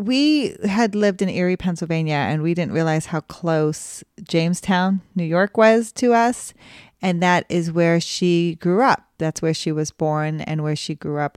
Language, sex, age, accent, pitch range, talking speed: English, female, 30-49, American, 160-195 Hz, 185 wpm